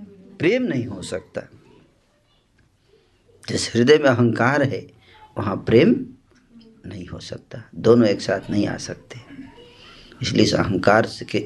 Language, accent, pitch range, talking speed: Hindi, native, 110-140 Hz, 120 wpm